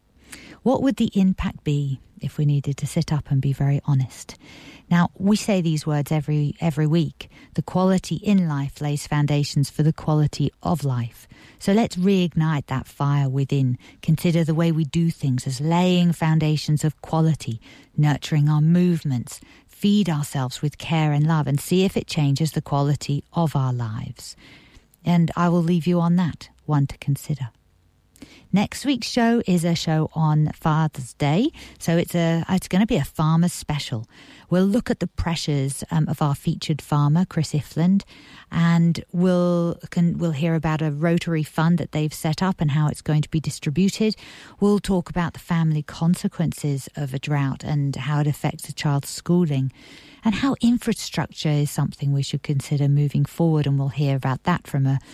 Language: English